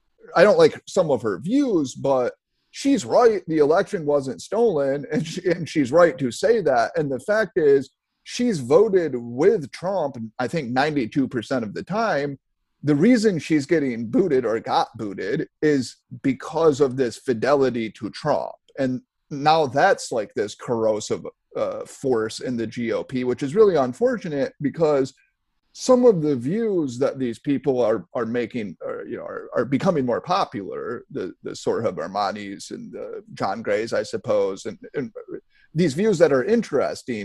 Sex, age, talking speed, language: male, 30-49, 165 wpm, English